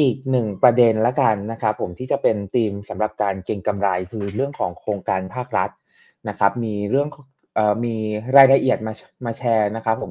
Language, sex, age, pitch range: Thai, male, 20-39, 110-140 Hz